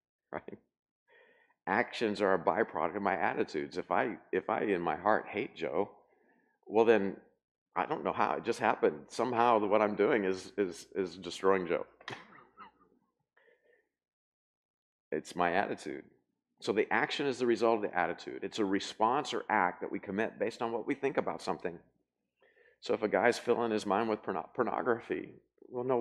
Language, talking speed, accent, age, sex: English, 170 wpm, American, 50-69, male